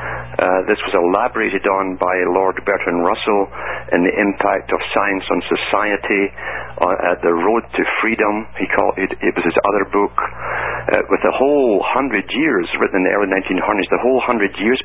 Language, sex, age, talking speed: English, male, 50-69, 180 wpm